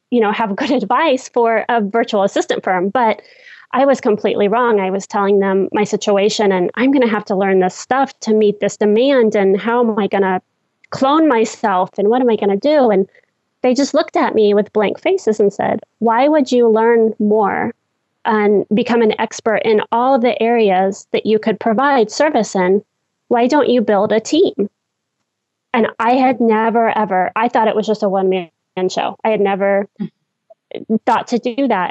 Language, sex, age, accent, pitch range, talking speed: English, female, 20-39, American, 200-235 Hz, 200 wpm